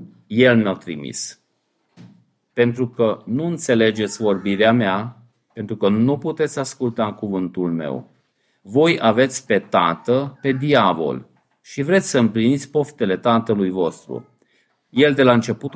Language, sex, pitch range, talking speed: Romanian, male, 115-145 Hz, 130 wpm